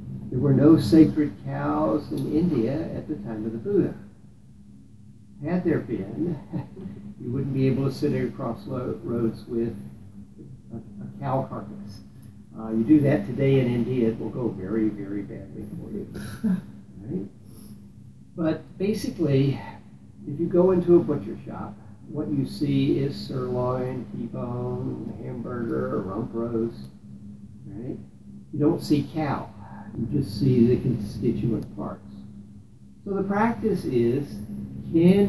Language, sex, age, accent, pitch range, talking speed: English, male, 60-79, American, 105-150 Hz, 140 wpm